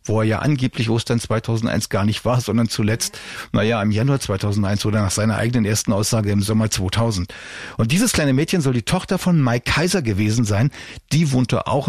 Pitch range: 110-145 Hz